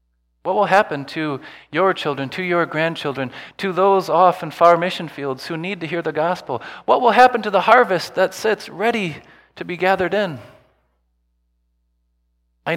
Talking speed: 170 wpm